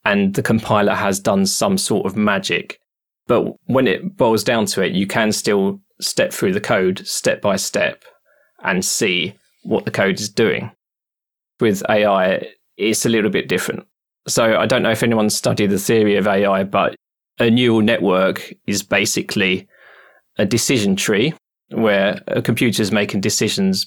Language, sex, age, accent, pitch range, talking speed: English, male, 20-39, British, 100-125 Hz, 165 wpm